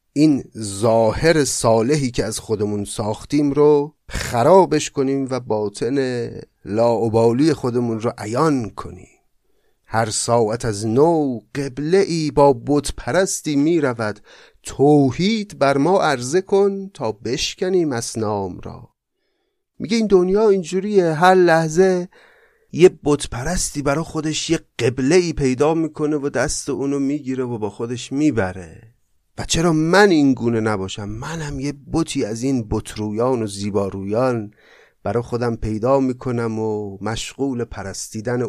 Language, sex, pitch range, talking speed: Persian, male, 110-155 Hz, 130 wpm